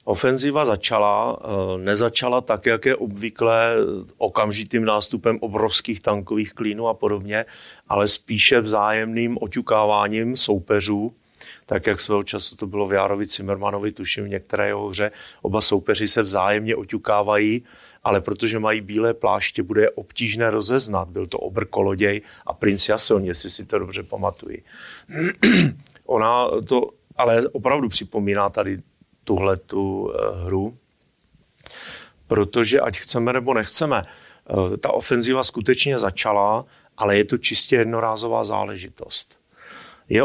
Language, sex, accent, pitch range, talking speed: Czech, male, native, 100-115 Hz, 120 wpm